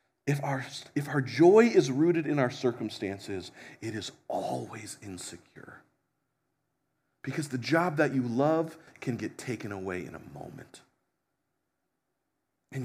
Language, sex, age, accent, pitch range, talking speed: English, male, 40-59, American, 100-135 Hz, 125 wpm